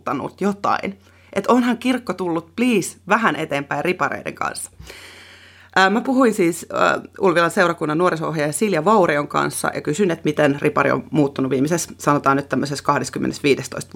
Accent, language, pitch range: native, Finnish, 145-200 Hz